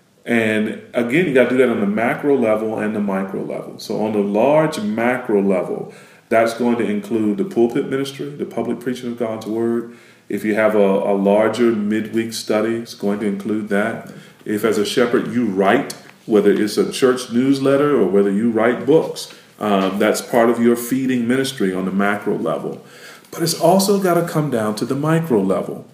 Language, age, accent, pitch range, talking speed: English, 40-59, American, 110-130 Hz, 195 wpm